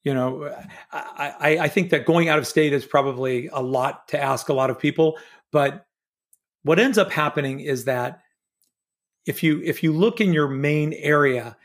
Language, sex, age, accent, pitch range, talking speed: English, male, 40-59, American, 130-160 Hz, 185 wpm